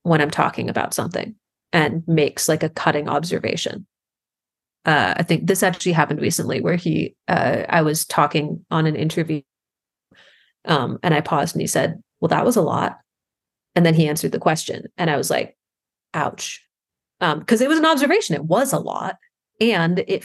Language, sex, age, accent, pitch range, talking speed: English, female, 30-49, American, 160-195 Hz, 185 wpm